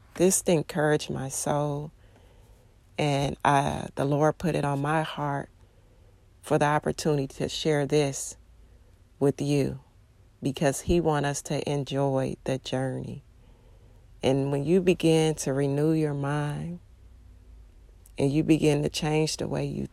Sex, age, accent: female, 40-59, American